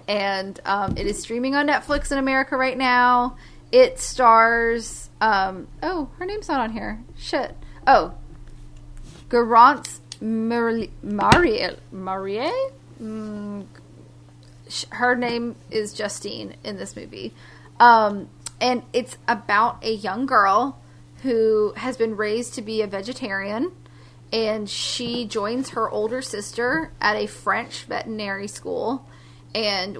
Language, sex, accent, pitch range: English, female, American, 155-250 Hz